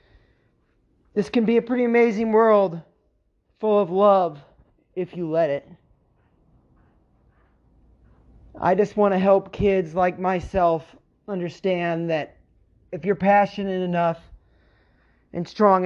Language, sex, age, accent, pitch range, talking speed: English, male, 30-49, American, 150-190 Hz, 115 wpm